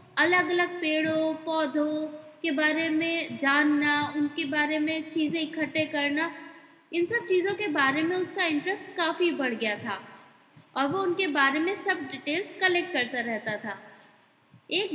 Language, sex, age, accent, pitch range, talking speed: Hindi, female, 20-39, native, 275-355 Hz, 155 wpm